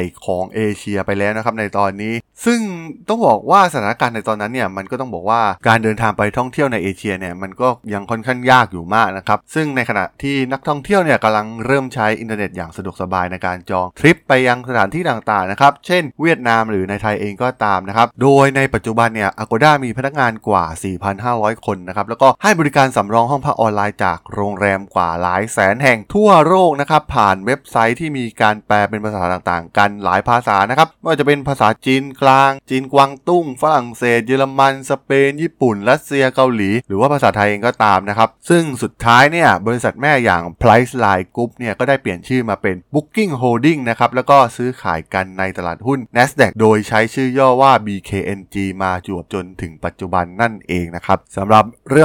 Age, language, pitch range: 20-39, Thai, 100-135 Hz